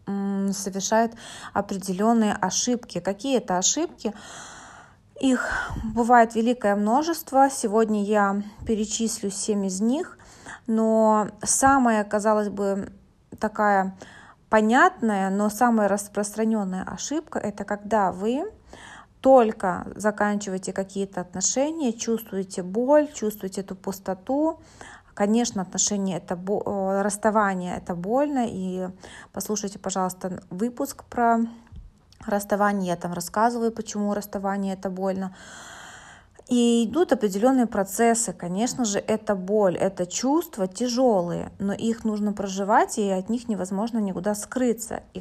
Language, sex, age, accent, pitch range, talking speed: Russian, female, 20-39, native, 195-230 Hz, 105 wpm